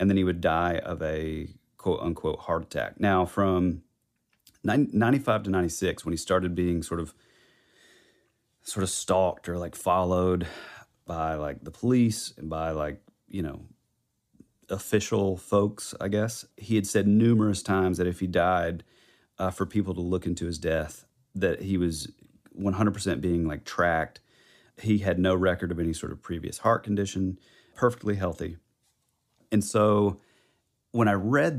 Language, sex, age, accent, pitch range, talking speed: English, male, 30-49, American, 90-110 Hz, 160 wpm